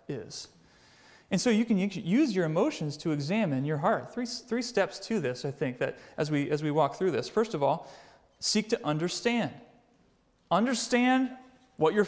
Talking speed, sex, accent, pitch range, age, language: 180 wpm, male, American, 160-235 Hz, 30-49, English